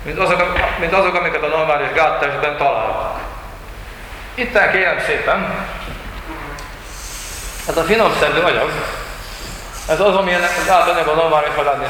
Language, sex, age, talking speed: Hungarian, male, 40-59, 115 wpm